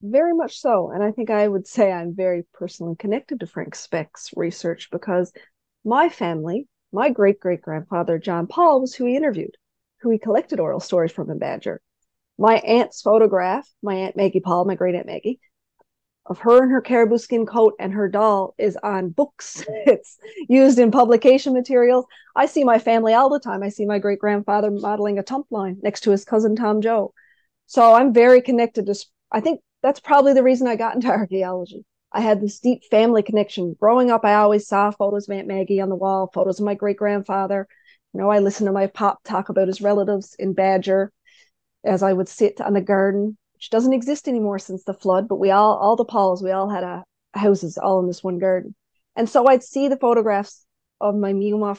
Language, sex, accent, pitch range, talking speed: English, female, American, 195-240 Hz, 200 wpm